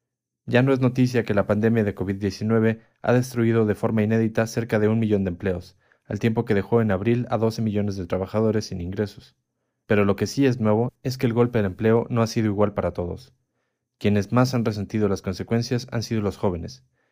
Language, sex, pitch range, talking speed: Spanish, male, 100-120 Hz, 215 wpm